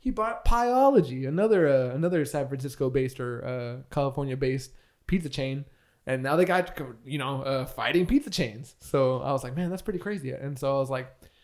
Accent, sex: American, male